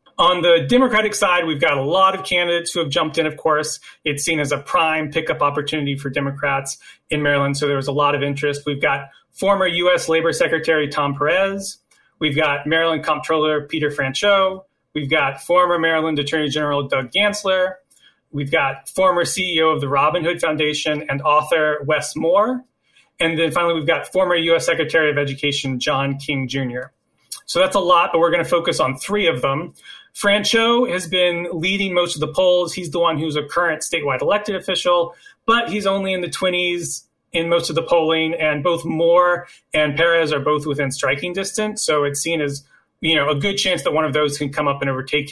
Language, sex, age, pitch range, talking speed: English, male, 30-49, 145-180 Hz, 200 wpm